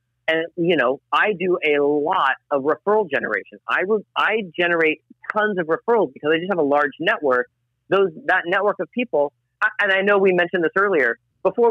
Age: 40-59